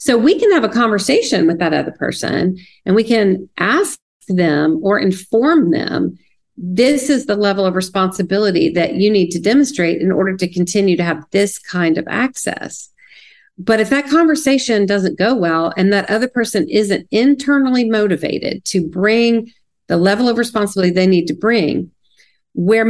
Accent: American